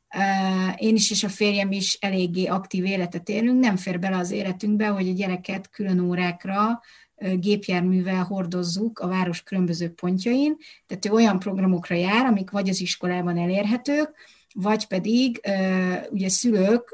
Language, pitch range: Hungarian, 185-225 Hz